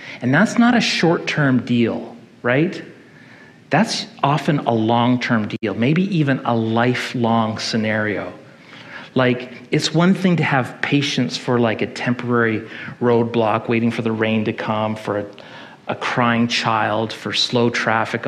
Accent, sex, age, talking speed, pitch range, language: American, male, 40-59, 140 wpm, 115-135 Hz, English